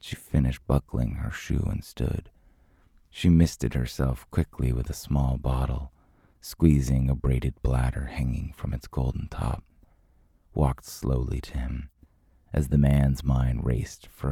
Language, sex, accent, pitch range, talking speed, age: English, male, American, 65-80 Hz, 145 wpm, 30-49